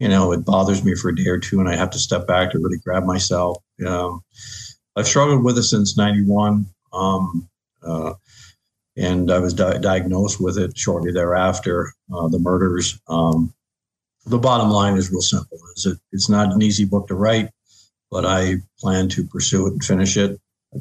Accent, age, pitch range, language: American, 50-69, 85-100 Hz, English